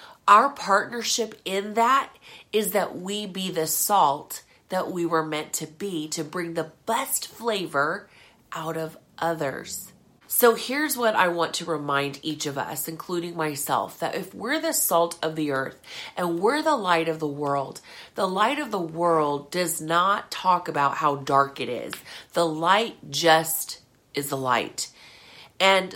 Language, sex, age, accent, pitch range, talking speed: English, female, 40-59, American, 150-195 Hz, 165 wpm